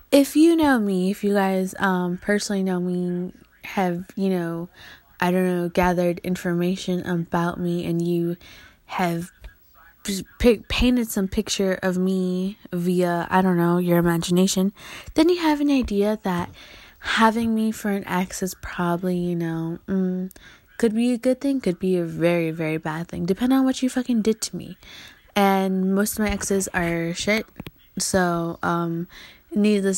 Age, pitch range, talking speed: 20-39, 175-205 Hz, 160 wpm